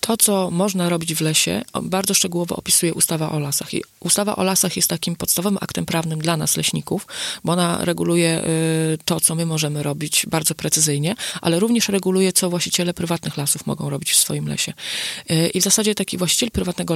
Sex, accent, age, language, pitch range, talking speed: female, native, 30-49, Polish, 155-185 Hz, 185 wpm